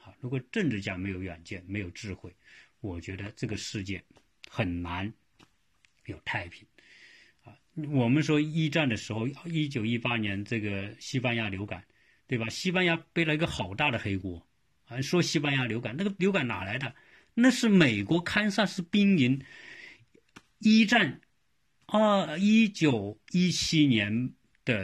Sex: male